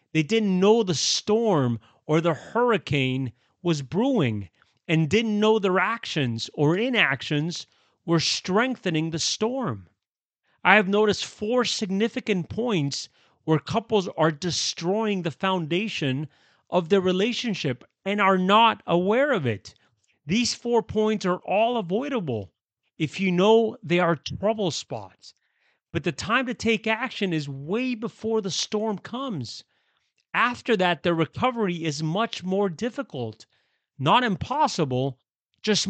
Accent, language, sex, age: American, English, male, 30-49